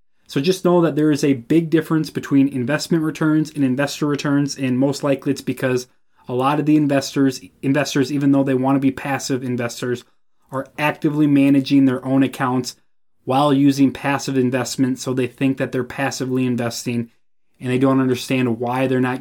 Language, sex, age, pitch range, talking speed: English, male, 20-39, 125-150 Hz, 180 wpm